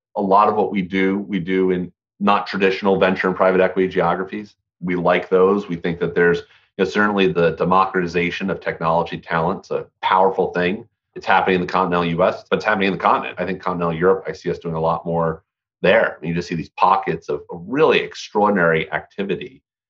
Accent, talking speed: American, 210 wpm